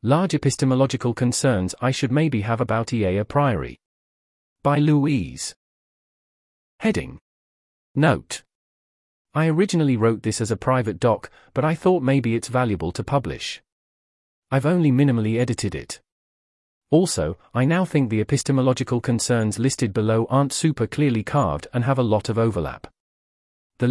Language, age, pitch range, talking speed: English, 40-59, 105-140 Hz, 140 wpm